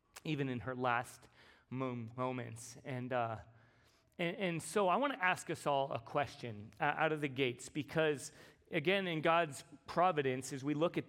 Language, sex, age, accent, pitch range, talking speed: English, male, 30-49, American, 125-165 Hz, 180 wpm